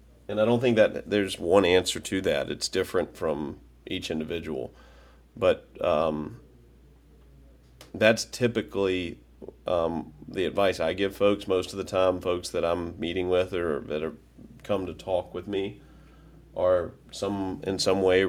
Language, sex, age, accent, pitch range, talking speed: English, male, 30-49, American, 75-95 Hz, 155 wpm